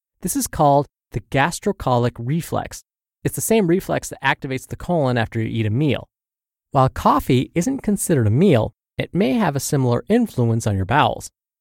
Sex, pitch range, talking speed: male, 115-175 Hz, 175 wpm